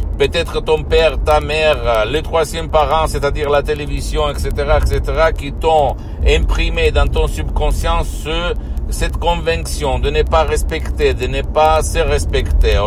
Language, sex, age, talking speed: Italian, male, 60-79, 145 wpm